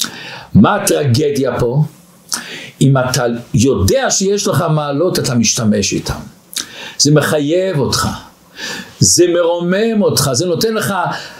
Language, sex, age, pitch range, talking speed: Hebrew, male, 60-79, 135-210 Hz, 110 wpm